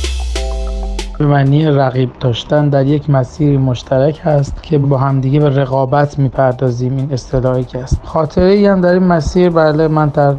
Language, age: Persian, 30-49